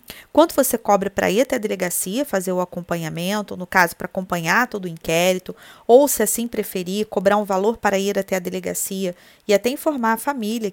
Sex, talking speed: female, 195 wpm